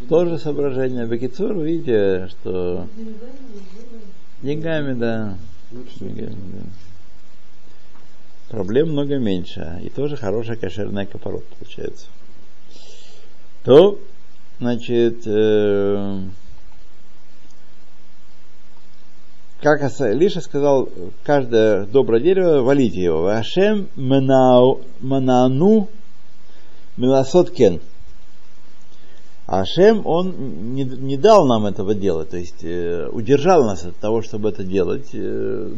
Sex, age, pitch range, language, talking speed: male, 60-79, 105-160 Hz, Russian, 90 wpm